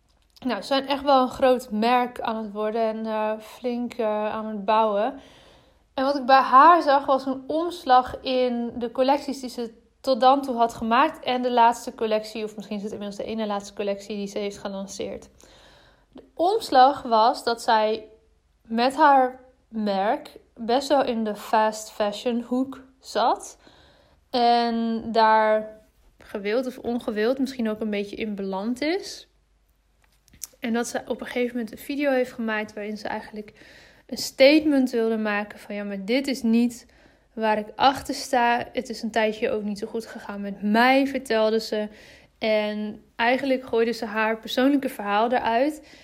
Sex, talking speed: female, 170 wpm